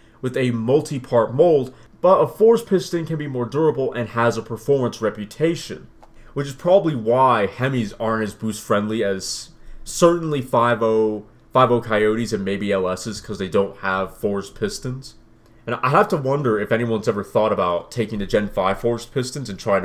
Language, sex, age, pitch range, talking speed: English, male, 30-49, 110-145 Hz, 170 wpm